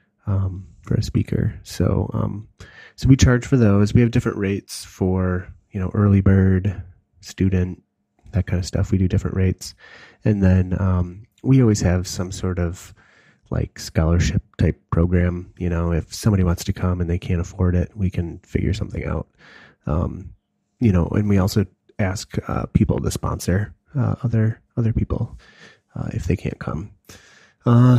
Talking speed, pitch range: 170 wpm, 90-110 Hz